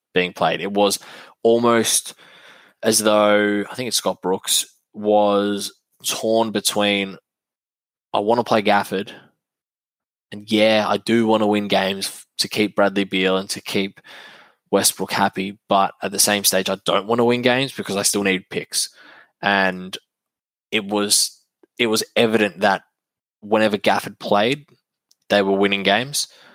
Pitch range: 95-105 Hz